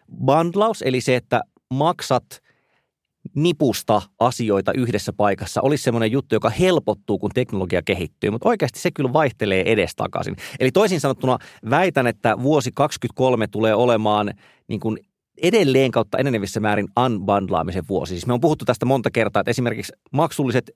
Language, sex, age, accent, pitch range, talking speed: Finnish, male, 30-49, native, 100-135 Hz, 145 wpm